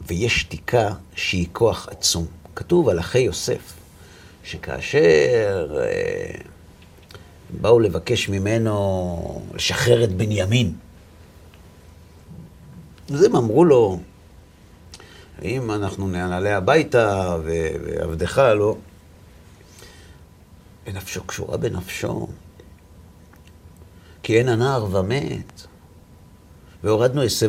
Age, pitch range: 50-69, 85-100 Hz